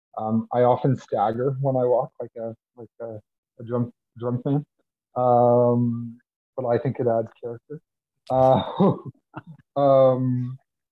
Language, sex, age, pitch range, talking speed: English, male, 30-49, 115-130 Hz, 115 wpm